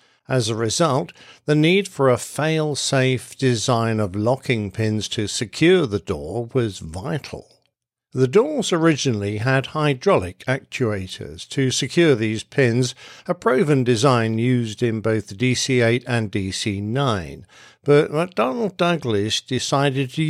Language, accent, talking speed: English, British, 125 wpm